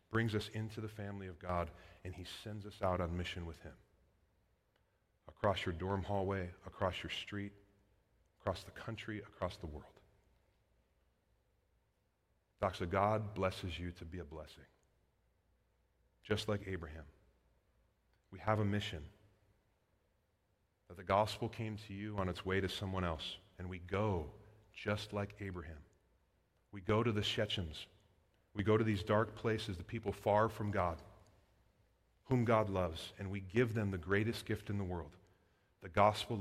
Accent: American